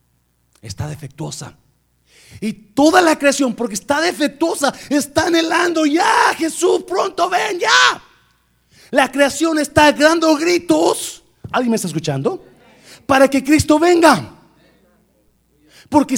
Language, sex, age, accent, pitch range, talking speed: Spanish, male, 40-59, Mexican, 210-315 Hz, 110 wpm